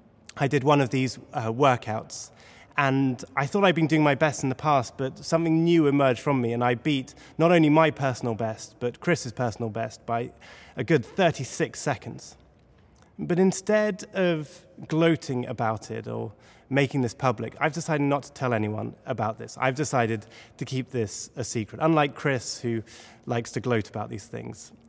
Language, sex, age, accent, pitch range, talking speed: English, male, 20-39, British, 115-155 Hz, 180 wpm